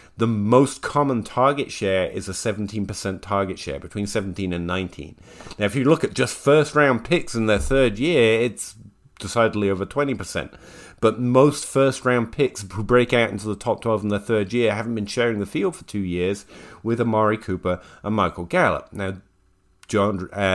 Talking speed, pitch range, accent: 180 wpm, 95-120 Hz, British